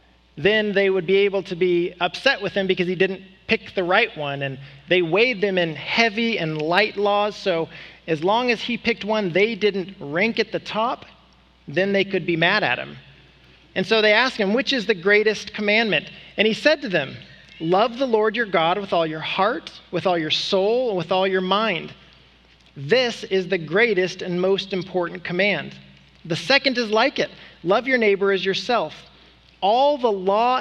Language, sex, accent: English, male, American